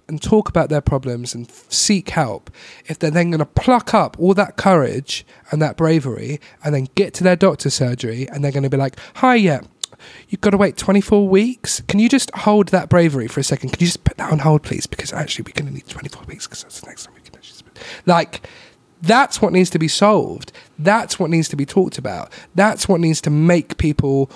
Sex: male